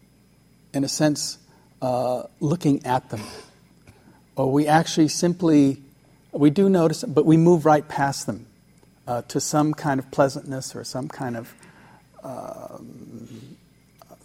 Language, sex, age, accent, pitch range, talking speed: English, male, 60-79, American, 120-155 Hz, 130 wpm